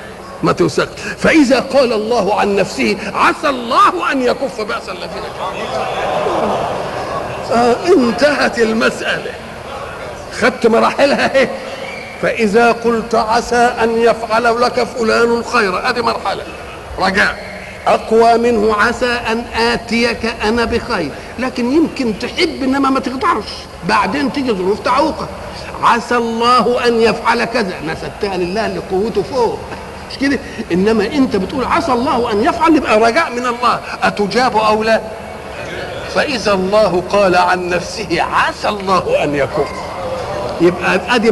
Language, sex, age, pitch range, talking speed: Arabic, male, 50-69, 215-255 Hz, 120 wpm